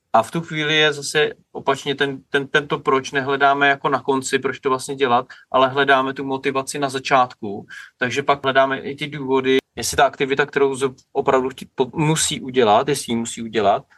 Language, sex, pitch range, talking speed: Czech, male, 130-155 Hz, 180 wpm